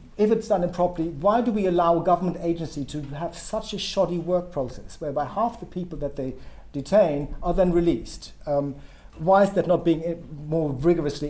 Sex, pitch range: male, 150-190 Hz